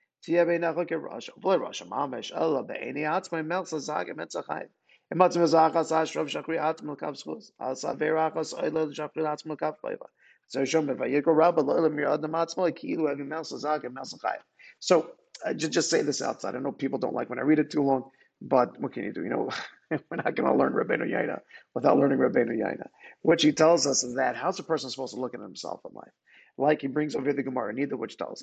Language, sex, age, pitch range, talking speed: English, male, 40-59, 135-165 Hz, 130 wpm